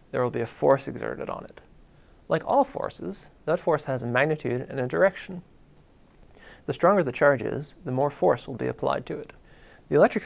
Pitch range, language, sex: 125-170 Hz, English, male